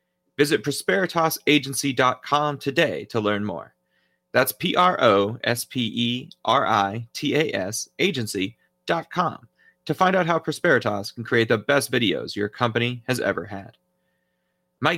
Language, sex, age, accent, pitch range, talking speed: English, male, 30-49, American, 100-130 Hz, 100 wpm